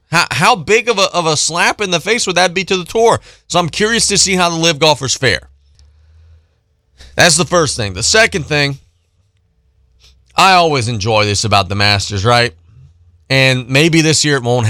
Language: English